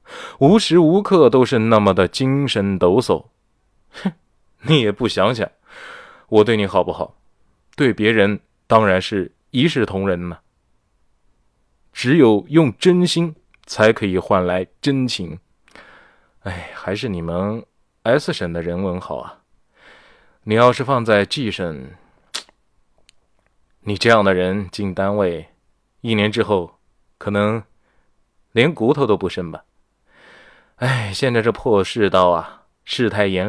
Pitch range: 95-120 Hz